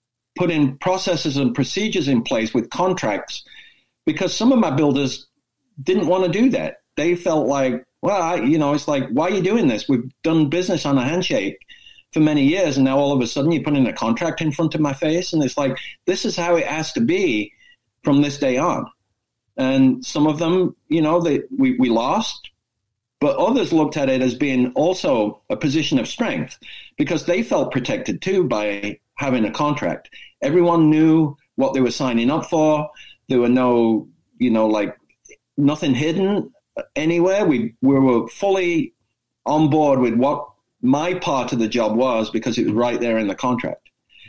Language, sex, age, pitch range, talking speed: English, male, 50-69, 120-170 Hz, 190 wpm